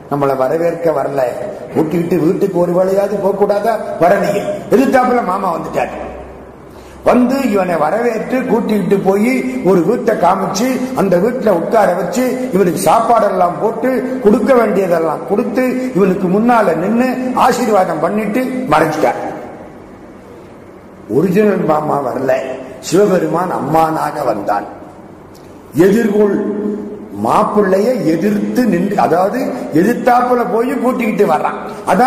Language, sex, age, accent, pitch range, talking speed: Tamil, male, 50-69, native, 180-240 Hz, 60 wpm